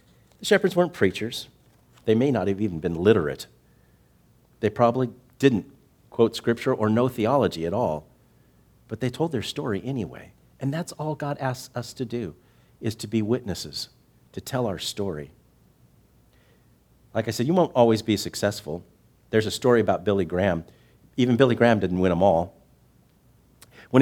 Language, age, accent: English, 50-69, American